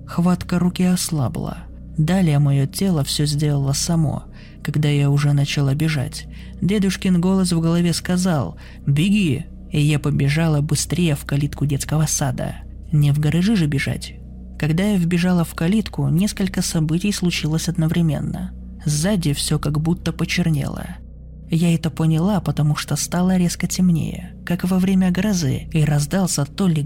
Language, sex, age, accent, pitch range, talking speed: Russian, male, 20-39, native, 145-180 Hz, 140 wpm